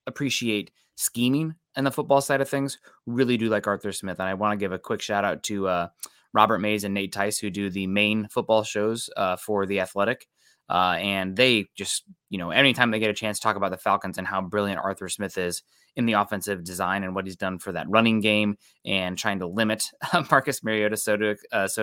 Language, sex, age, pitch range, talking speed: English, male, 20-39, 100-120 Hz, 220 wpm